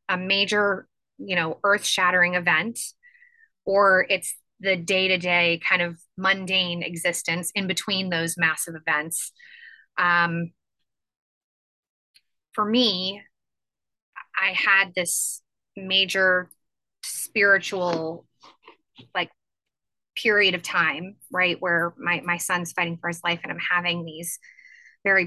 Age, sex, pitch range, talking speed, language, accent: 20-39, female, 170-195 Hz, 115 wpm, English, American